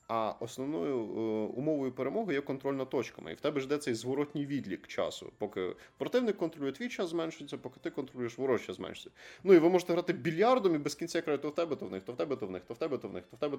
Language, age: Ukrainian, 20-39